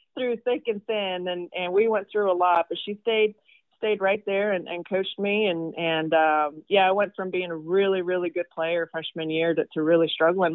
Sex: female